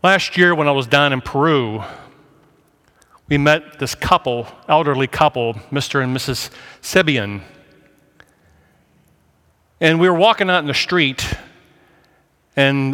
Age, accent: 40-59, American